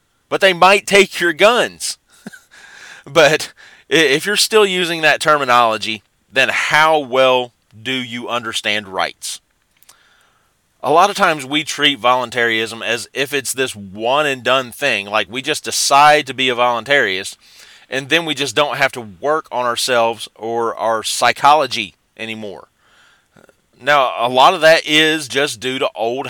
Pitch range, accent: 120-155 Hz, American